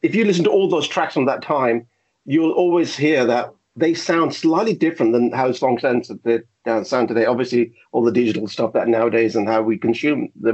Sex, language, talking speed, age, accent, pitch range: male, English, 200 wpm, 50-69, British, 125-190 Hz